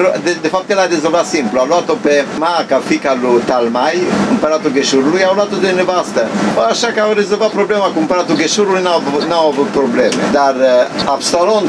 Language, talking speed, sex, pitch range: Romanian, 180 wpm, male, 150-190 Hz